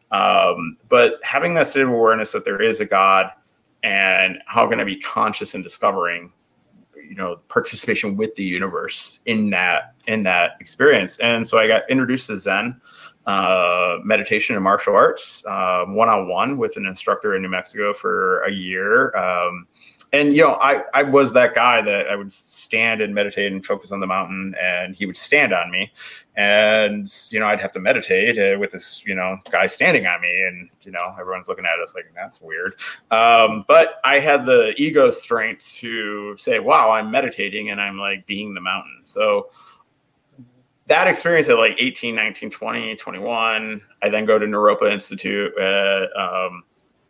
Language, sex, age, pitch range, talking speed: English, male, 30-49, 100-130 Hz, 180 wpm